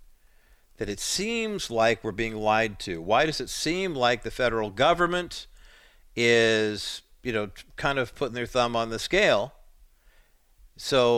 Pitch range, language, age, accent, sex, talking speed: 100-135 Hz, English, 50-69, American, male, 150 wpm